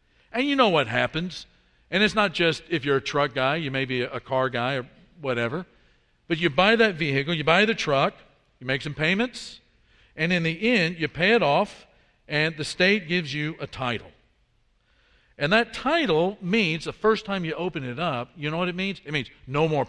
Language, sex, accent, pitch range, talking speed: English, male, American, 140-200 Hz, 210 wpm